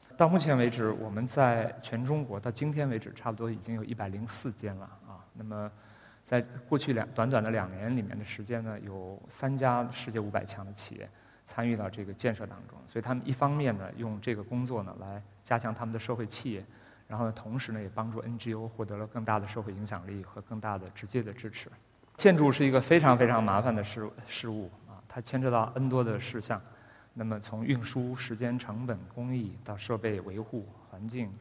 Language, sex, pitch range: Chinese, male, 105-125 Hz